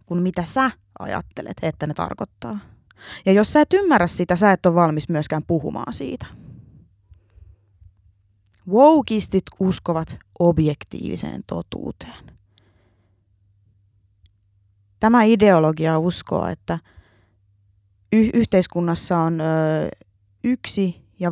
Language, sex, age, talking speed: Finnish, female, 20-39, 95 wpm